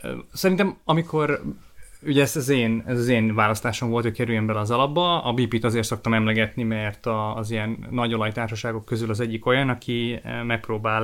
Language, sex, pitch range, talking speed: Hungarian, male, 110-125 Hz, 160 wpm